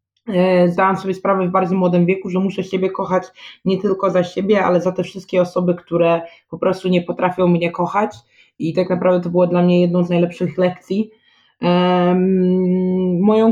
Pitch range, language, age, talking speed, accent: 165-185 Hz, Polish, 20-39, 175 wpm, native